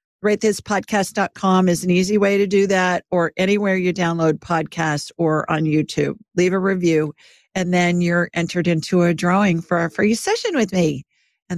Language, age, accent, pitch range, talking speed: English, 50-69, American, 160-200 Hz, 180 wpm